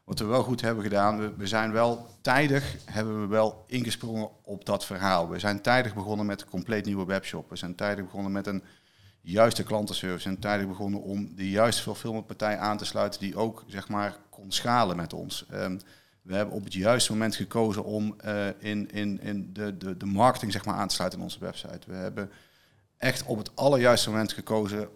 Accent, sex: Dutch, male